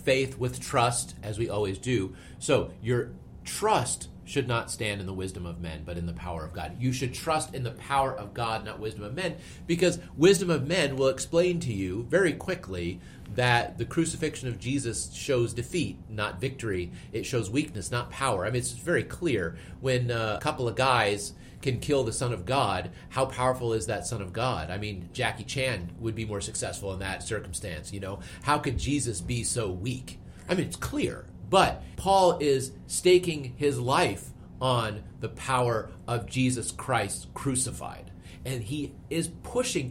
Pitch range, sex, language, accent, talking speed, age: 100-140 Hz, male, English, American, 185 wpm, 30-49